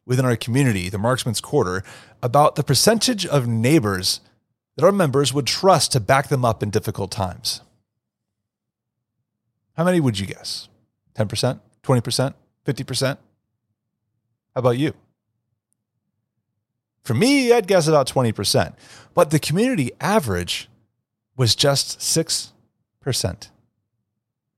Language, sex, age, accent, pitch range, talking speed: English, male, 30-49, American, 110-140 Hz, 115 wpm